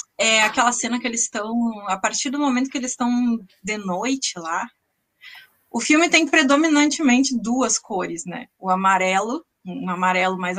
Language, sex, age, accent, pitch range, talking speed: Portuguese, female, 20-39, Brazilian, 195-260 Hz, 160 wpm